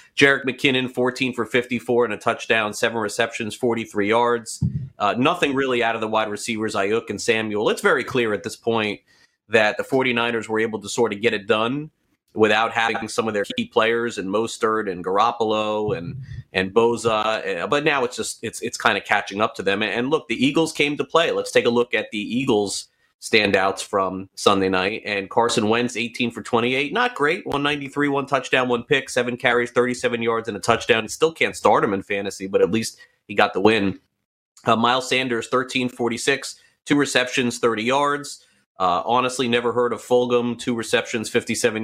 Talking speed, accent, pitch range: 190 wpm, American, 105-130 Hz